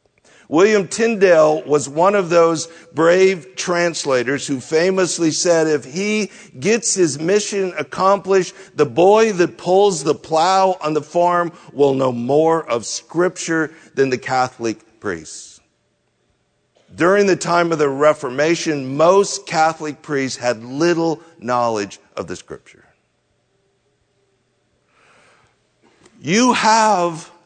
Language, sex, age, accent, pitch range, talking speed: English, male, 50-69, American, 145-190 Hz, 115 wpm